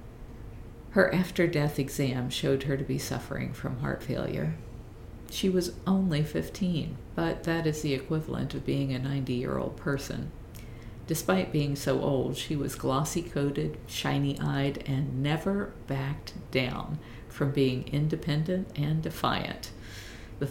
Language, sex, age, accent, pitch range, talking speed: English, female, 50-69, American, 115-150 Hz, 140 wpm